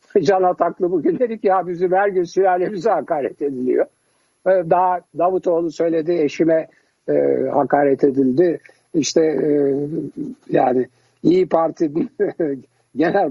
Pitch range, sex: 145-200 Hz, male